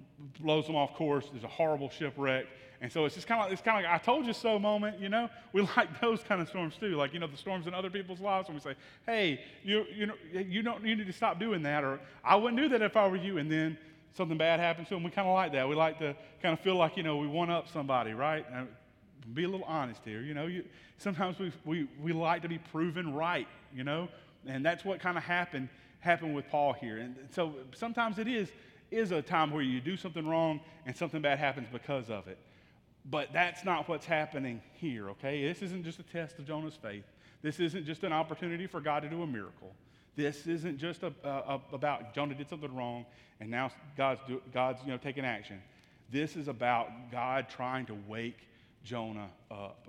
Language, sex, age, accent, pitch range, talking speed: English, male, 30-49, American, 130-175 Hz, 235 wpm